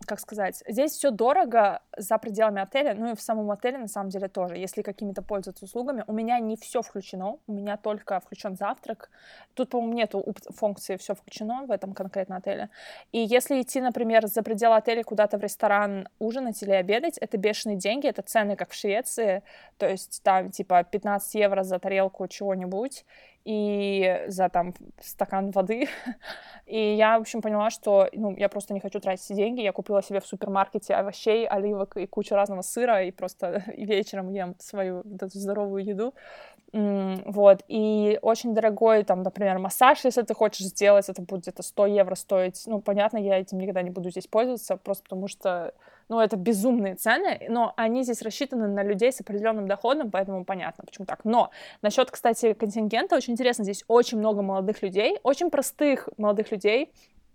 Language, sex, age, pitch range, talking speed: Russian, female, 20-39, 195-230 Hz, 180 wpm